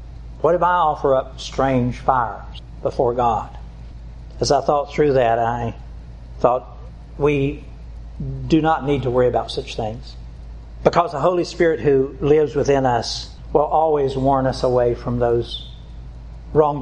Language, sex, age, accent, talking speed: English, male, 60-79, American, 145 wpm